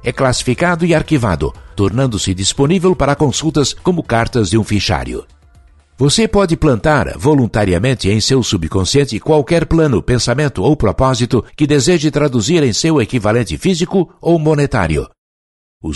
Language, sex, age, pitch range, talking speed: Portuguese, male, 60-79, 105-155 Hz, 130 wpm